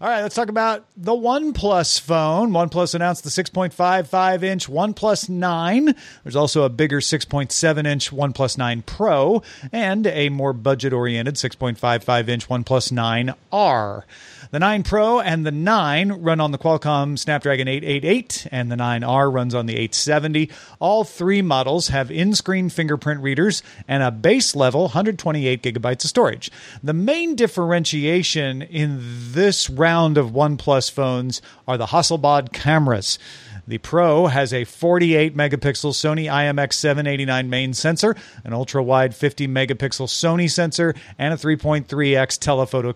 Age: 40-59